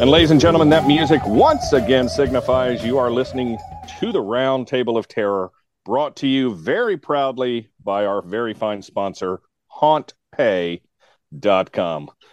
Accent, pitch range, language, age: American, 125-155 Hz, English, 40-59